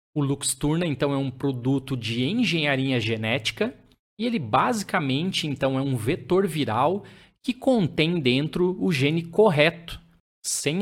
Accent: Brazilian